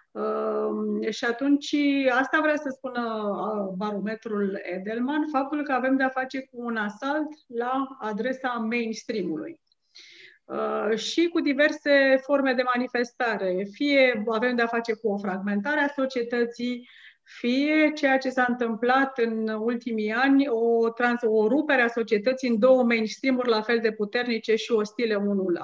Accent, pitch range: native, 215-265 Hz